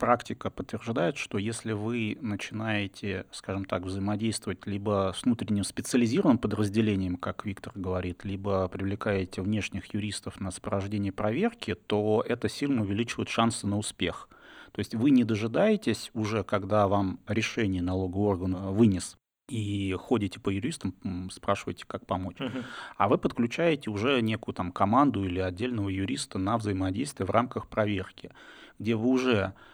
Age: 30-49